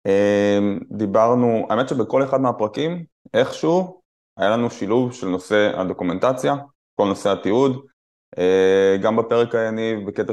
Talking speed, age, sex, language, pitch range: 110 wpm, 20-39, male, Hebrew, 95-120 Hz